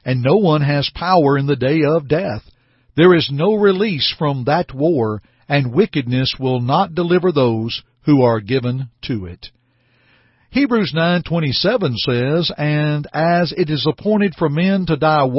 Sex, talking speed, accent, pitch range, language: male, 155 wpm, American, 125-180 Hz, English